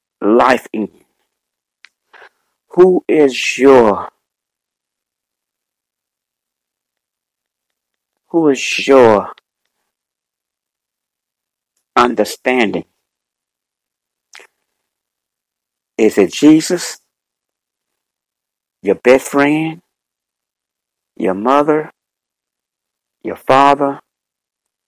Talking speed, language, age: 45 wpm, English, 60-79